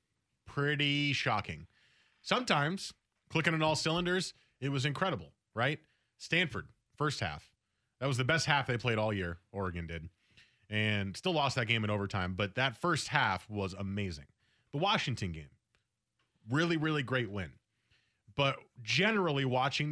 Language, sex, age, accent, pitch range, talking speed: English, male, 20-39, American, 105-140 Hz, 145 wpm